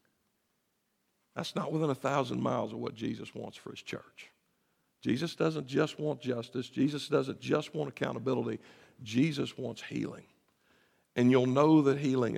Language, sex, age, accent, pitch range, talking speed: English, male, 60-79, American, 140-175 Hz, 150 wpm